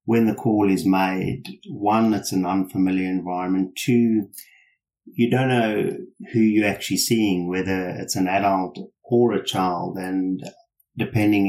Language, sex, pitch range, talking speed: English, male, 95-115 Hz, 140 wpm